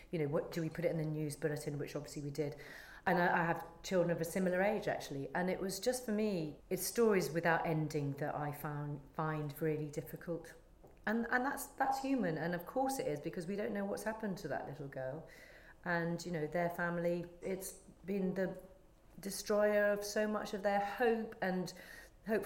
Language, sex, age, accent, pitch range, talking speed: English, female, 40-59, British, 155-190 Hz, 210 wpm